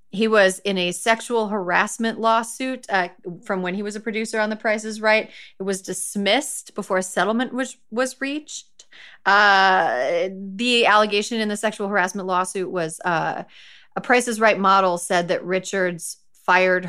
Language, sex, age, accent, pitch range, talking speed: English, female, 30-49, American, 185-245 Hz, 165 wpm